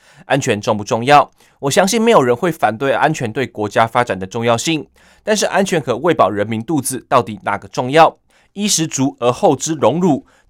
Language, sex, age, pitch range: Chinese, male, 20-39, 115-160 Hz